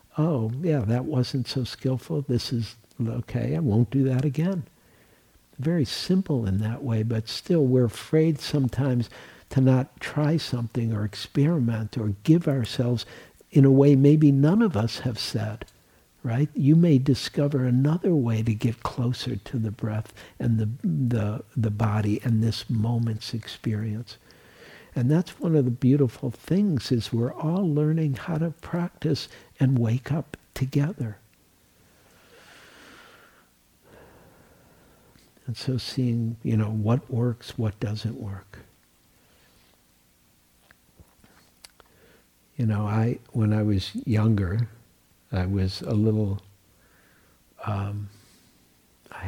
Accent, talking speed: American, 125 wpm